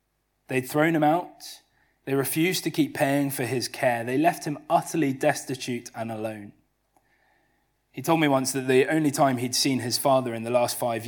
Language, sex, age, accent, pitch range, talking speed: English, male, 20-39, British, 120-140 Hz, 190 wpm